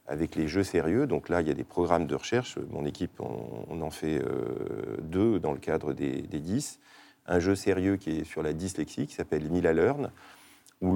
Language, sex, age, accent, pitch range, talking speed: French, male, 40-59, French, 90-125 Hz, 215 wpm